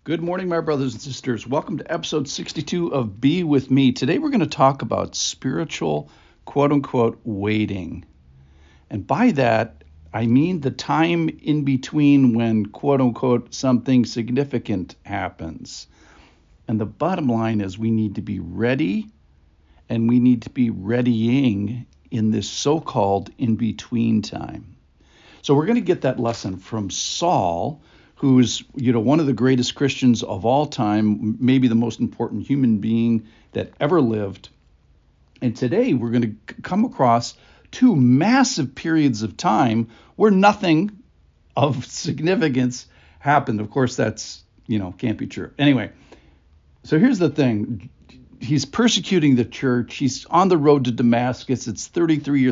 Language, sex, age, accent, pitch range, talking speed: English, male, 60-79, American, 105-140 Hz, 145 wpm